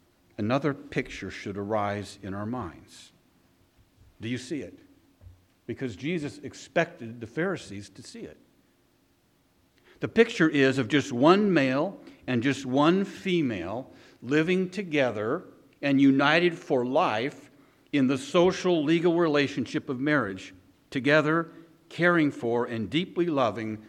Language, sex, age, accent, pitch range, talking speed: English, male, 60-79, American, 100-150 Hz, 125 wpm